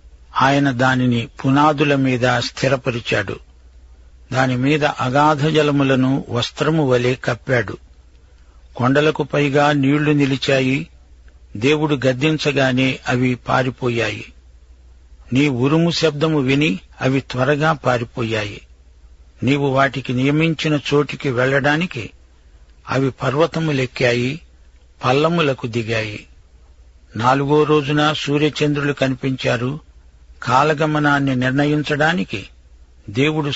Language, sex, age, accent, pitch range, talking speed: Telugu, male, 60-79, native, 105-145 Hz, 75 wpm